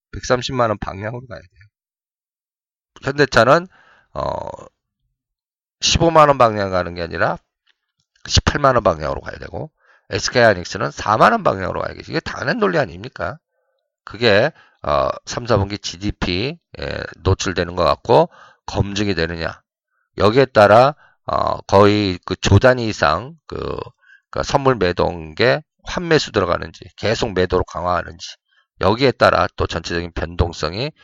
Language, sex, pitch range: Korean, male, 90-125 Hz